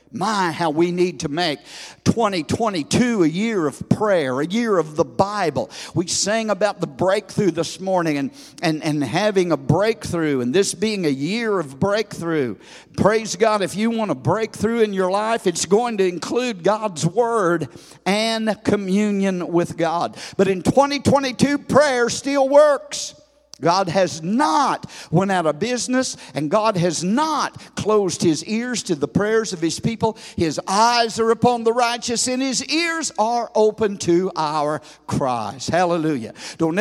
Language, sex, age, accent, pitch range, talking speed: English, male, 50-69, American, 165-225 Hz, 160 wpm